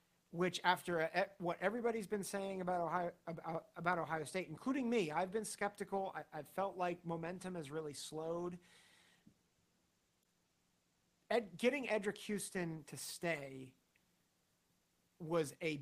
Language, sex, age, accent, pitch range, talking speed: English, male, 40-59, American, 150-195 Hz, 130 wpm